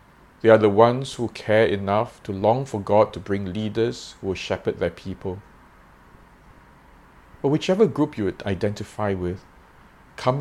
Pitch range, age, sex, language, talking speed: 85-110 Hz, 50-69, male, English, 150 wpm